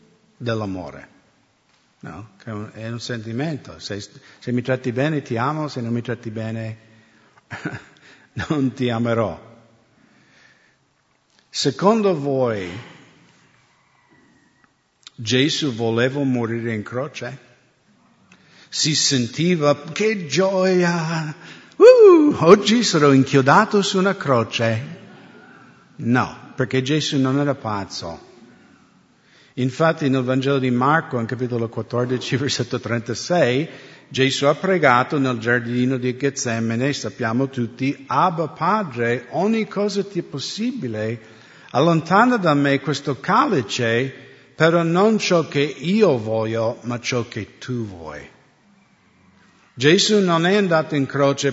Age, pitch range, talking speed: 50-69, 120-160 Hz, 105 wpm